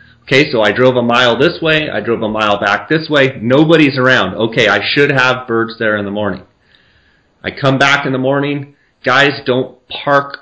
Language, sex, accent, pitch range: English, male, American, 110-135 Hz